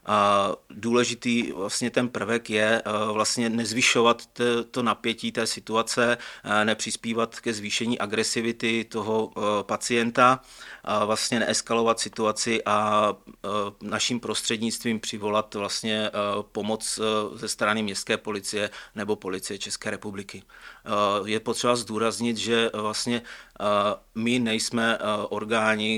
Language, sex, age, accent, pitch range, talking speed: Czech, male, 30-49, native, 105-115 Hz, 100 wpm